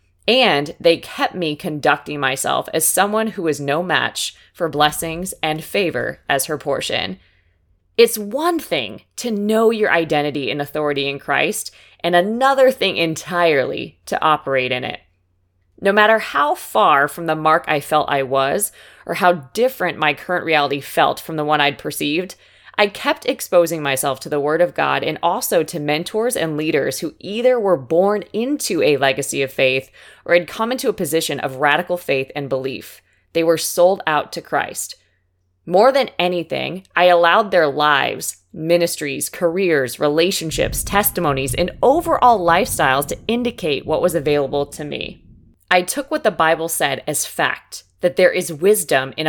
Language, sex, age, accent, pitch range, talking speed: English, female, 20-39, American, 140-180 Hz, 165 wpm